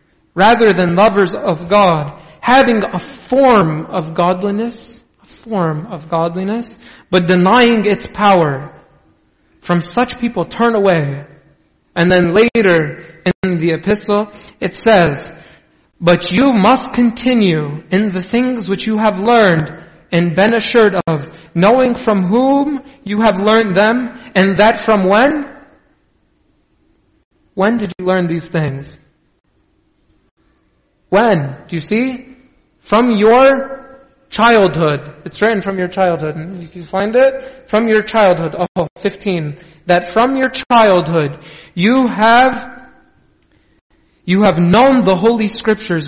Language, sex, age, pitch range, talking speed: English, male, 40-59, 170-225 Hz, 125 wpm